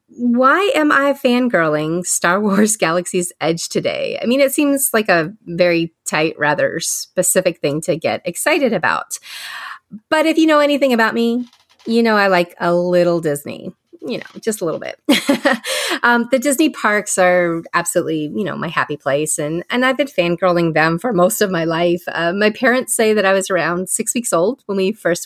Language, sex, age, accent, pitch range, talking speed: English, female, 30-49, American, 170-250 Hz, 190 wpm